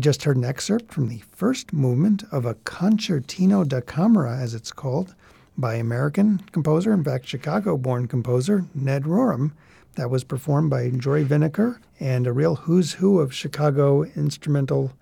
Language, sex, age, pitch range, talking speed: English, male, 50-69, 130-165 Hz, 155 wpm